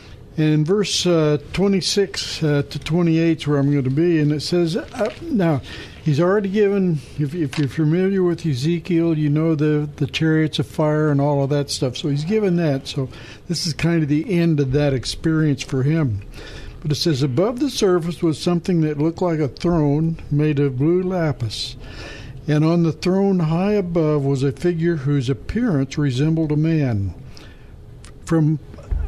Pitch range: 140-170 Hz